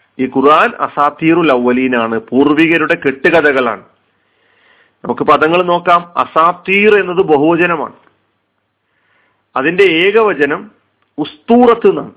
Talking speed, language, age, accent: 70 wpm, Malayalam, 40-59, native